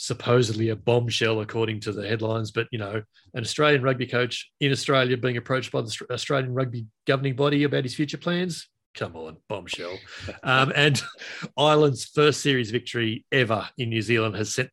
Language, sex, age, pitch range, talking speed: English, male, 30-49, 110-140 Hz, 175 wpm